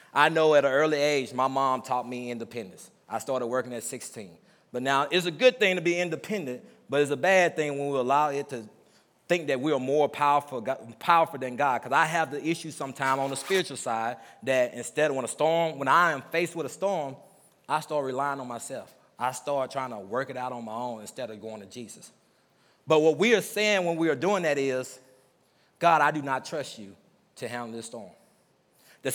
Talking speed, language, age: 225 wpm, English, 30-49